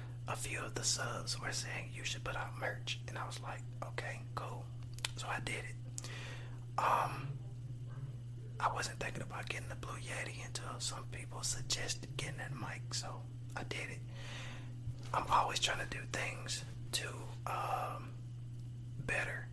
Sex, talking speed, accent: male, 155 wpm, American